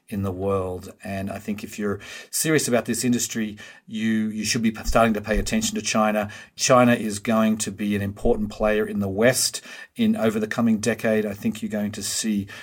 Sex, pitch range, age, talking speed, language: male, 100-120 Hz, 40-59, 210 wpm, English